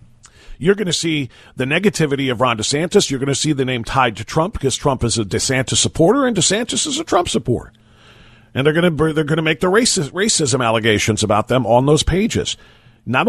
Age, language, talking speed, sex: 40-59, English, 215 wpm, male